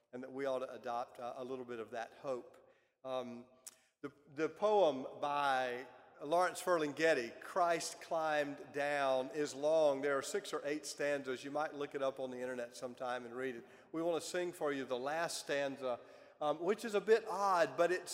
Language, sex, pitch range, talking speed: English, male, 140-185 Hz, 195 wpm